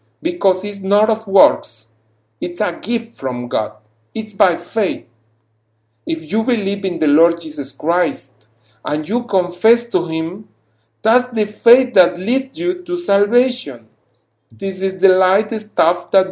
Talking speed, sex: 145 wpm, male